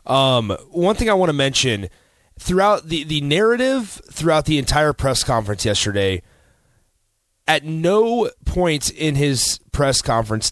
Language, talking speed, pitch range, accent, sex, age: English, 135 wpm, 110-170 Hz, American, male, 30-49